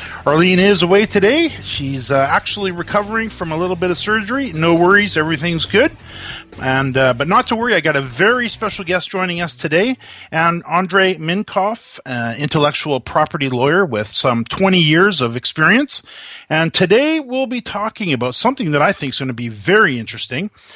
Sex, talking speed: male, 180 wpm